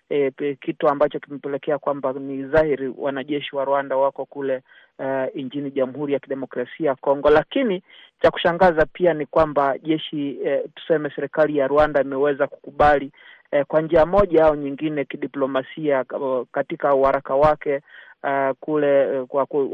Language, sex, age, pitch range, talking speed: Swahili, male, 40-59, 140-160 Hz, 135 wpm